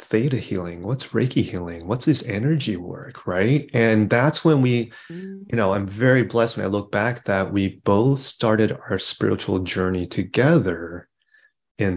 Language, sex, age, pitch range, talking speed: English, male, 30-49, 95-125 Hz, 160 wpm